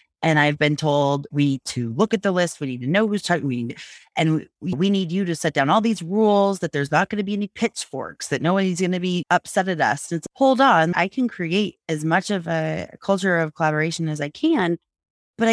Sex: female